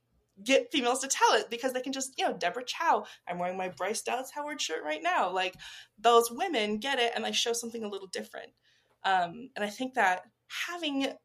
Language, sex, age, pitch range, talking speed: English, female, 20-39, 200-245 Hz, 215 wpm